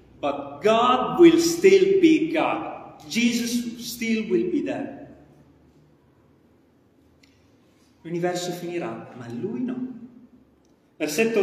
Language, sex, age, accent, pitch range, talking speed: Italian, male, 30-49, native, 160-245 Hz, 90 wpm